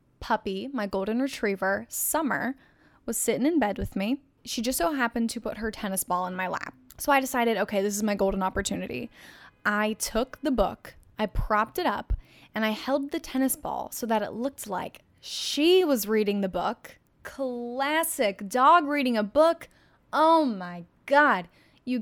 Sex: female